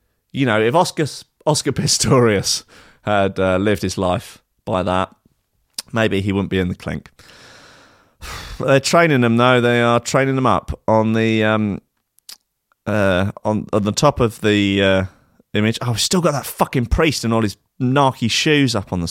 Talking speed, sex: 175 wpm, male